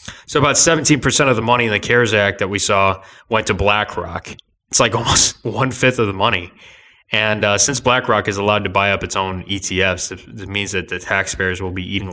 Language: English